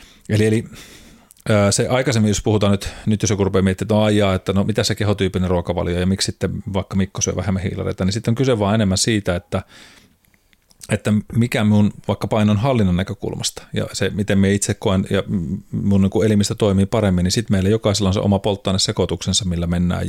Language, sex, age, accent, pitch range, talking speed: Finnish, male, 30-49, native, 95-110 Hz, 200 wpm